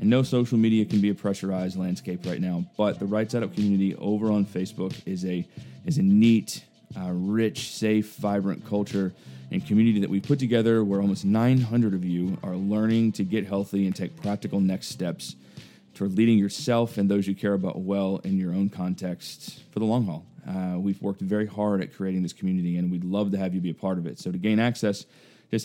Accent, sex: American, male